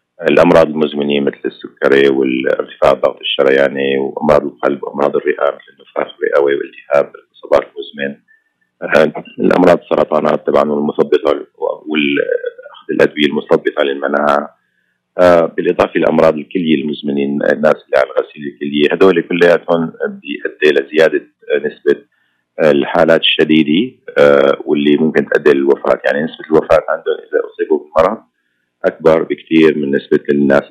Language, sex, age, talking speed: Arabic, male, 40-59, 110 wpm